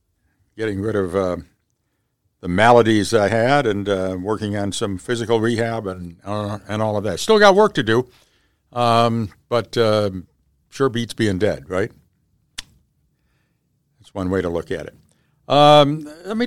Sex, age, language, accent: male, 60-79, English, American